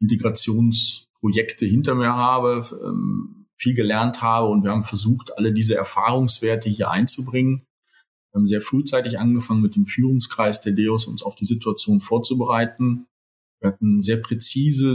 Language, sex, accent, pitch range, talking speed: German, male, German, 105-125 Hz, 140 wpm